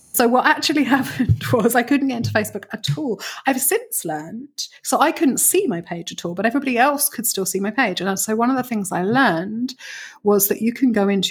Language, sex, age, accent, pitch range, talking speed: English, female, 30-49, British, 190-230 Hz, 240 wpm